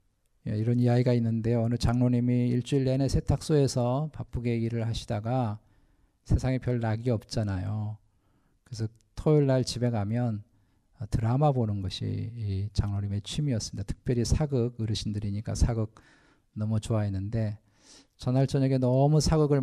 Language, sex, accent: Korean, male, native